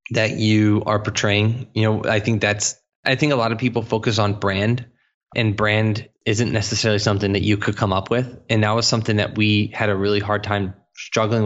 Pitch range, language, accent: 100-115 Hz, English, American